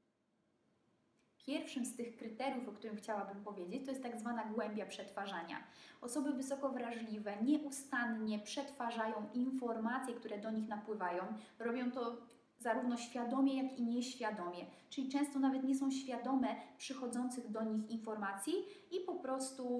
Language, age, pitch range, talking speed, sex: Polish, 20-39, 215-260 Hz, 135 wpm, female